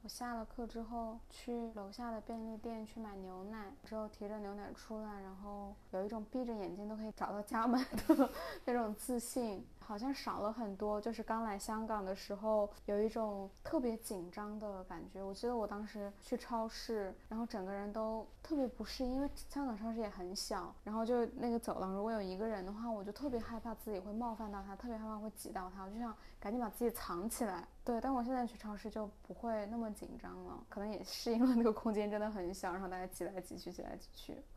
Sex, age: female, 10-29